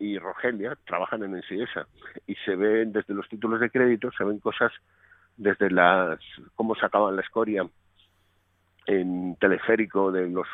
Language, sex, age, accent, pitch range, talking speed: Spanish, male, 50-69, Spanish, 90-105 Hz, 150 wpm